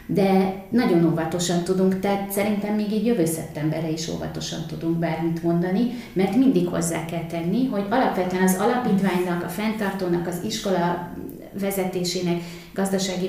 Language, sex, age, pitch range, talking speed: Hungarian, female, 30-49, 170-200 Hz, 135 wpm